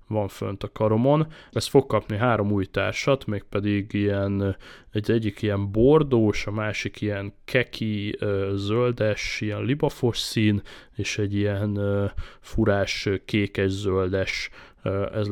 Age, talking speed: 20-39, 120 wpm